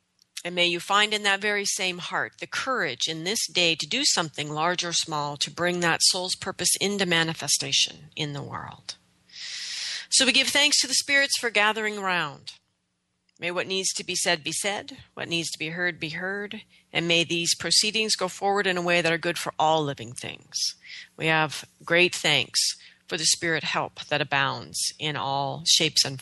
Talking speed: 195 wpm